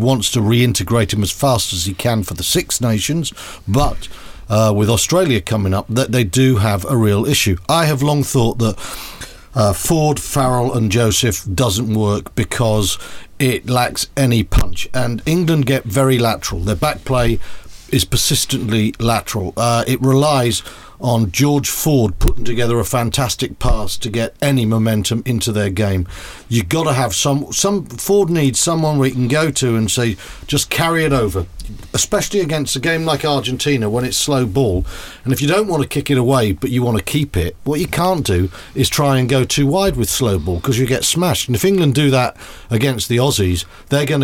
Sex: male